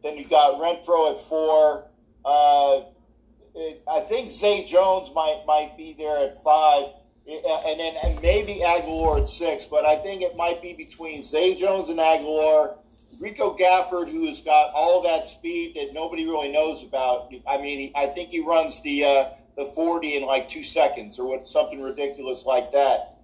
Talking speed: 185 wpm